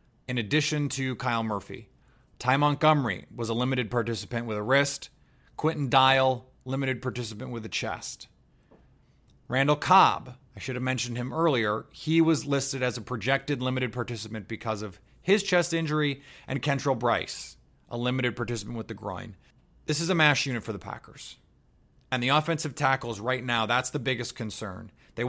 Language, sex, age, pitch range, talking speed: English, male, 30-49, 110-140 Hz, 165 wpm